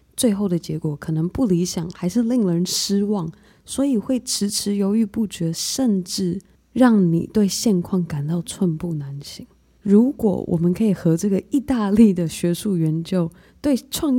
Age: 20-39